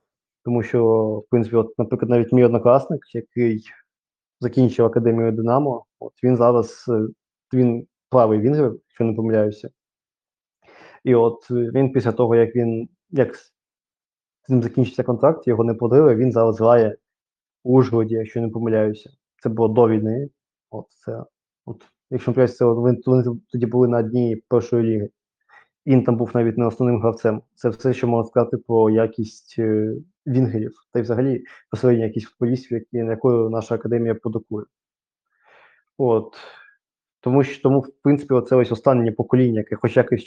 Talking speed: 150 wpm